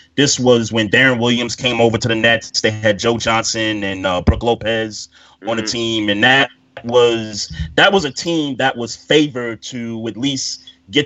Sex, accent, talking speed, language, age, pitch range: male, American, 190 wpm, English, 30-49, 110-135 Hz